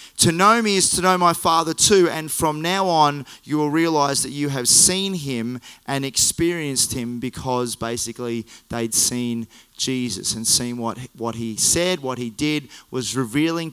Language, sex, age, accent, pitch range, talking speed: English, male, 30-49, Australian, 125-160 Hz, 180 wpm